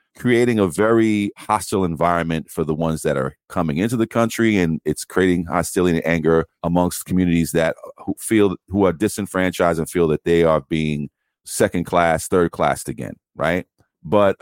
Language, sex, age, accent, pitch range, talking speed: English, male, 40-59, American, 80-100 Hz, 165 wpm